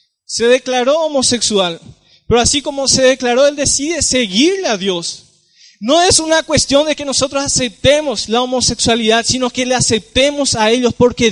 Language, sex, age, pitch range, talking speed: Spanish, male, 20-39, 185-240 Hz, 160 wpm